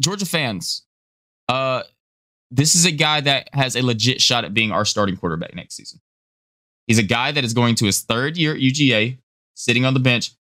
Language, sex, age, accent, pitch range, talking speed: English, male, 20-39, American, 110-135 Hz, 200 wpm